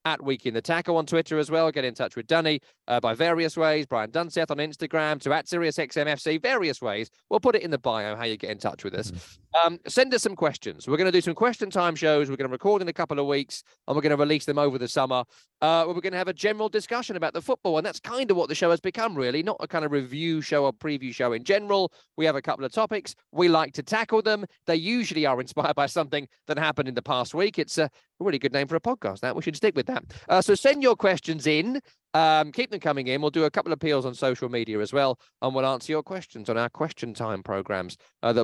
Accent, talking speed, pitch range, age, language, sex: British, 275 wpm, 130-180 Hz, 30-49, English, male